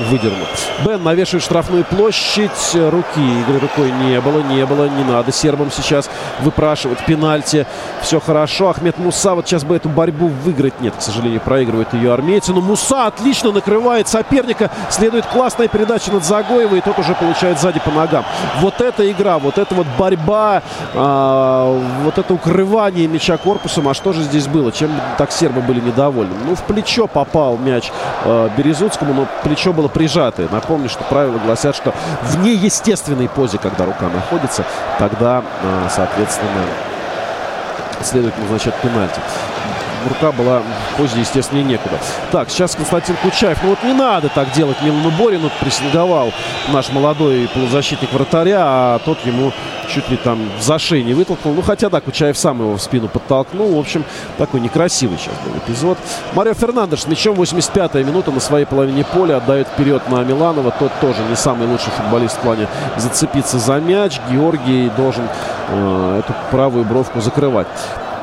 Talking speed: 160 wpm